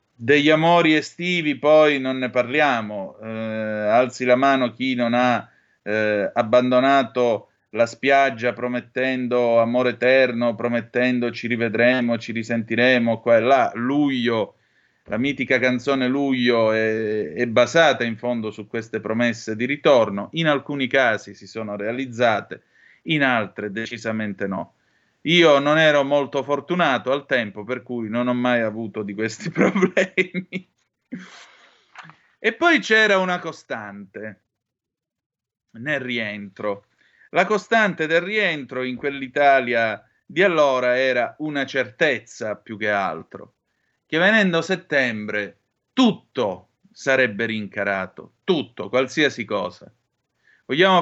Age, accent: 30-49, native